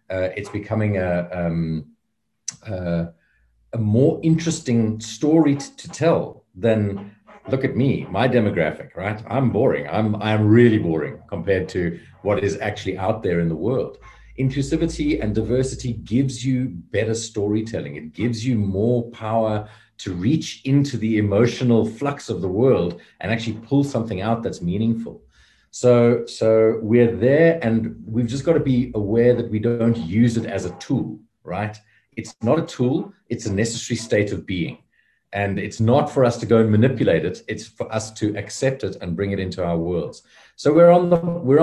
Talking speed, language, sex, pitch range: 175 wpm, English, male, 100-125 Hz